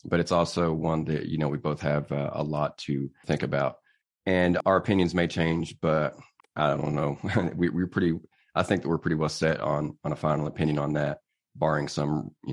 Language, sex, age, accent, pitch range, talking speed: English, male, 30-49, American, 75-85 Hz, 215 wpm